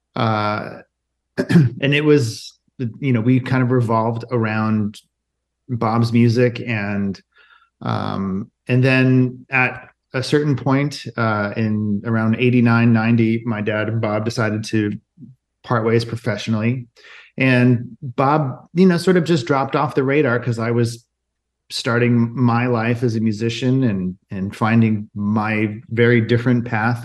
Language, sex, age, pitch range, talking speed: English, male, 40-59, 110-130 Hz, 140 wpm